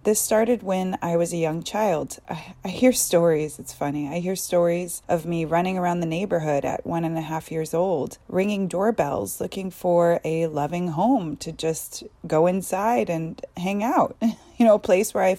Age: 30-49